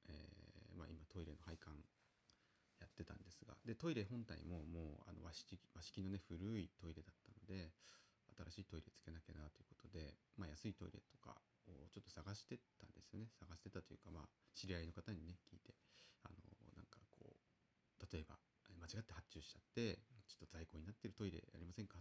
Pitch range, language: 85-105 Hz, Japanese